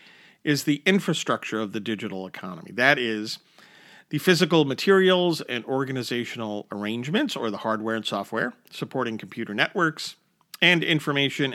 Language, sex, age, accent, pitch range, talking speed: English, male, 50-69, American, 115-170 Hz, 130 wpm